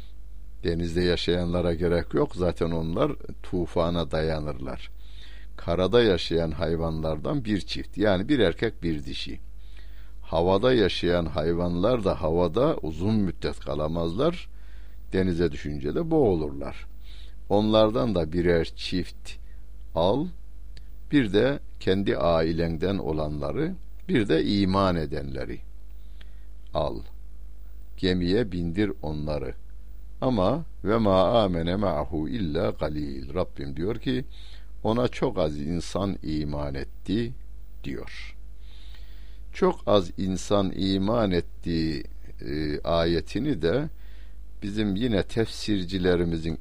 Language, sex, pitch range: Turkish, male, 75-100 Hz